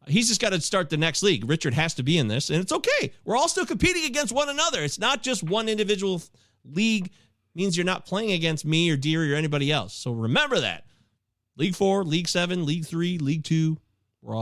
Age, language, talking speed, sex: 30-49, English, 225 wpm, male